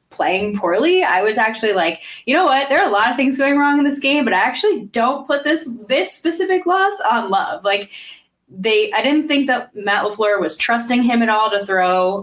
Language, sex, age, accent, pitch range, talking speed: English, female, 10-29, American, 180-215 Hz, 225 wpm